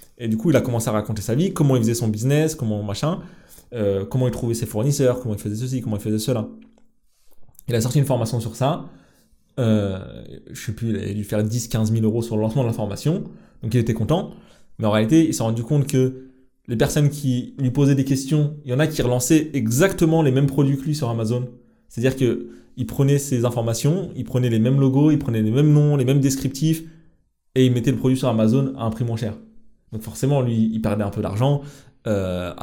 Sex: male